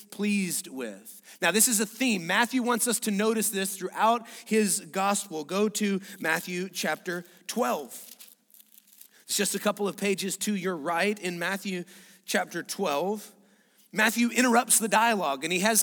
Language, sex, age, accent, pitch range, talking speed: English, male, 30-49, American, 190-225 Hz, 155 wpm